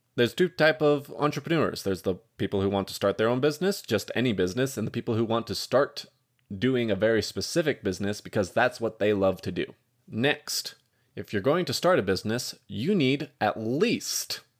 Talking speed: 200 wpm